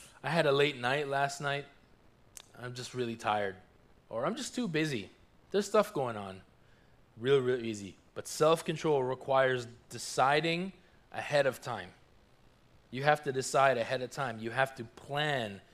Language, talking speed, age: English, 155 wpm, 20-39